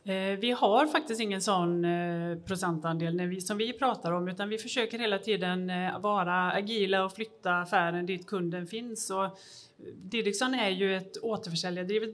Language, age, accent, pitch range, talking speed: Swedish, 30-49, native, 175-210 Hz, 140 wpm